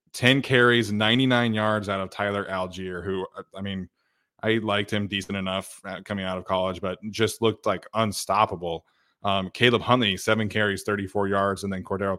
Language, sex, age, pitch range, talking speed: English, male, 20-39, 95-115 Hz, 170 wpm